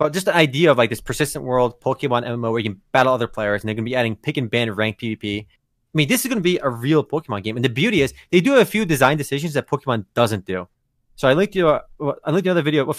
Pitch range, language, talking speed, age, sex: 110-150 Hz, English, 285 wpm, 30-49, male